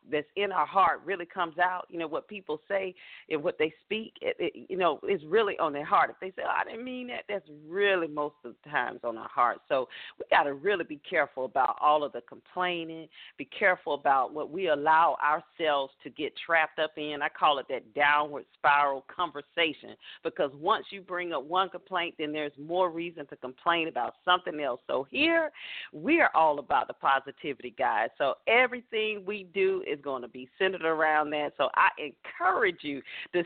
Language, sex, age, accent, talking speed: English, female, 40-59, American, 205 wpm